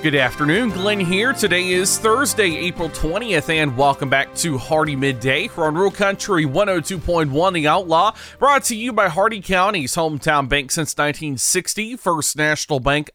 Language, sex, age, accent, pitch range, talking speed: English, male, 30-49, American, 140-195 Hz, 160 wpm